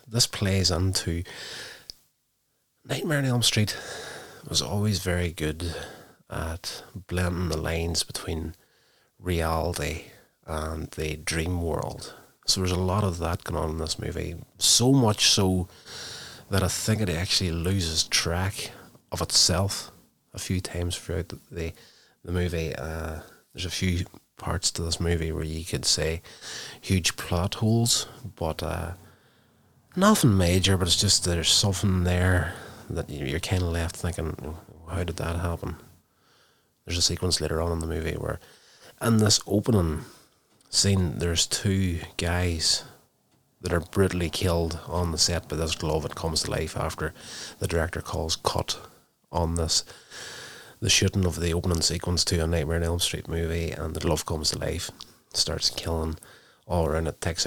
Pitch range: 80-95 Hz